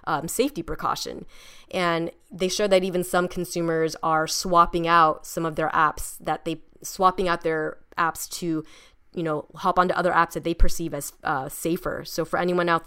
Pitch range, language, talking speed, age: 155-180 Hz, English, 185 wpm, 20-39